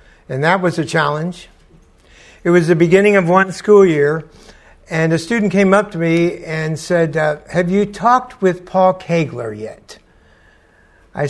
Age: 60-79